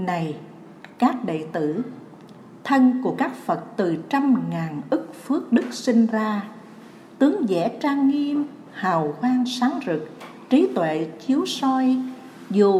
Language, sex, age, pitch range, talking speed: Vietnamese, female, 60-79, 175-255 Hz, 135 wpm